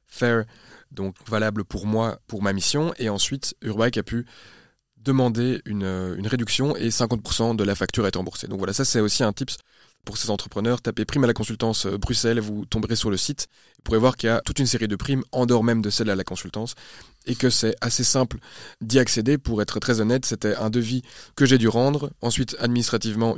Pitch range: 105-125 Hz